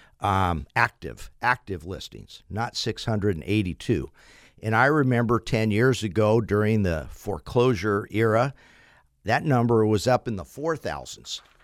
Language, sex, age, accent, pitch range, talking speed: English, male, 50-69, American, 100-130 Hz, 120 wpm